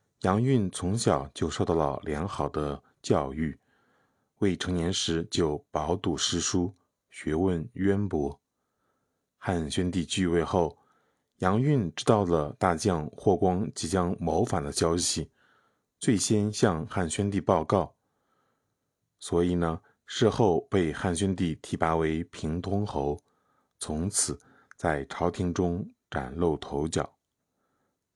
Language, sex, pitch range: Chinese, male, 85-105 Hz